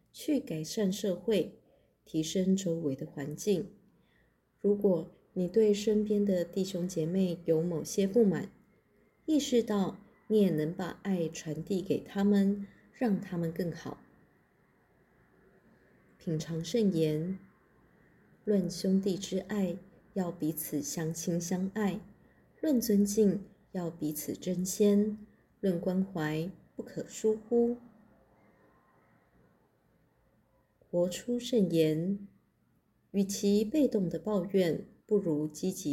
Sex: female